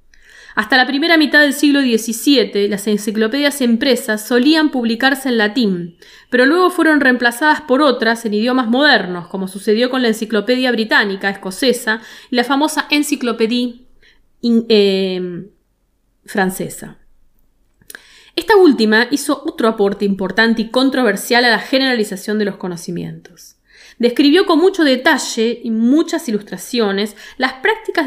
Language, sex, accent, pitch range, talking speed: Spanish, female, Argentinian, 210-285 Hz, 125 wpm